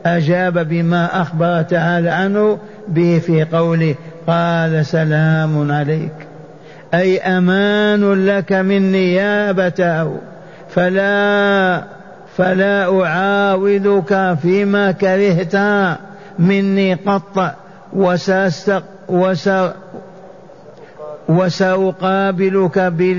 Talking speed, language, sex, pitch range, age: 65 wpm, Arabic, male, 180-195 Hz, 50-69